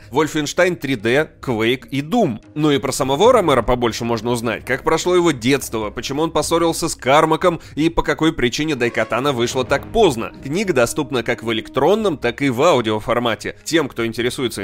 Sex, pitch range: male, 120-160 Hz